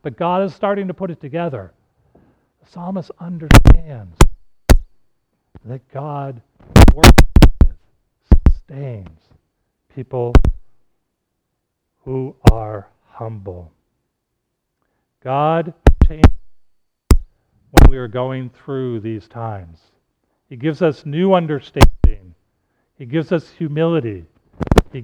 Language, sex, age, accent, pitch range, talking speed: English, male, 50-69, American, 100-150 Hz, 90 wpm